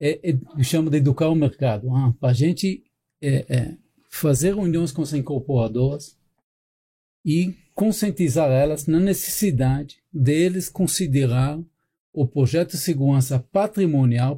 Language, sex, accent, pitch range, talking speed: Portuguese, male, Brazilian, 135-180 Hz, 130 wpm